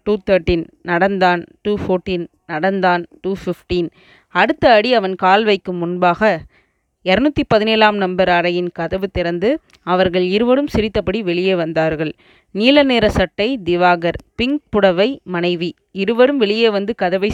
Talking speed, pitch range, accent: 120 wpm, 180-225 Hz, native